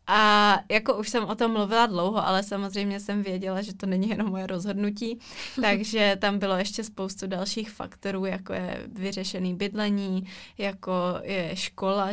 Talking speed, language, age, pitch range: 160 wpm, Czech, 20-39, 190-215 Hz